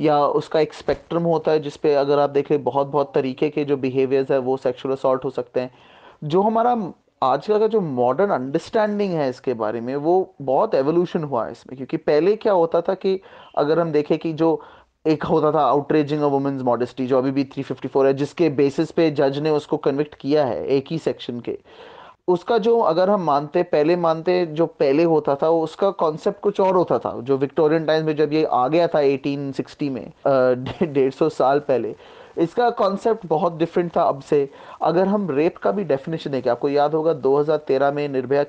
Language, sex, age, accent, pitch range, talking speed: Hindi, male, 20-39, native, 140-180 Hz, 165 wpm